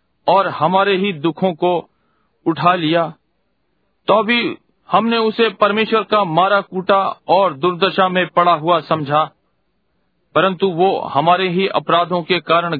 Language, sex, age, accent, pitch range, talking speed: Hindi, male, 40-59, native, 165-205 Hz, 130 wpm